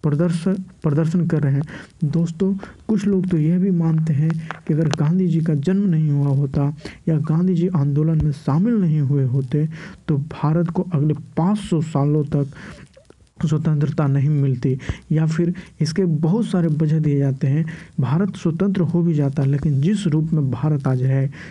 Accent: native